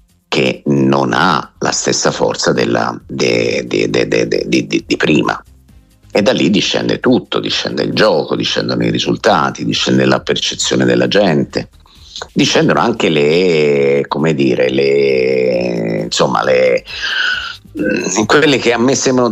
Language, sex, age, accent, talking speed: Italian, male, 50-69, native, 120 wpm